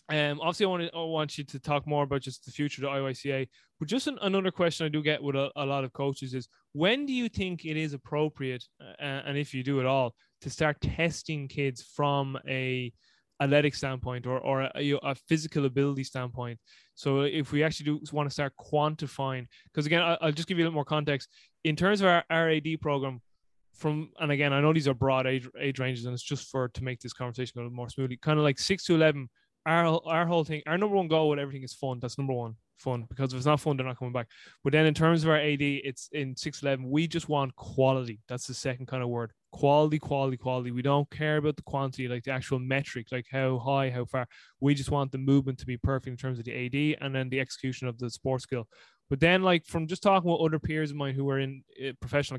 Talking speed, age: 250 wpm, 20-39